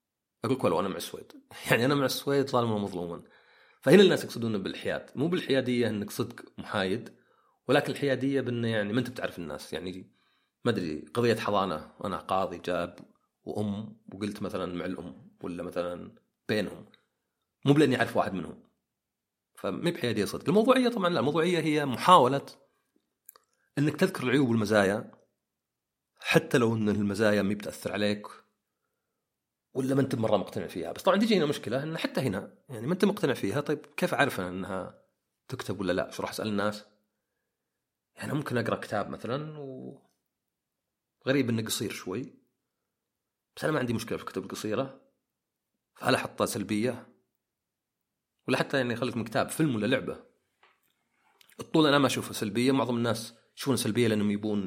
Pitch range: 105-140 Hz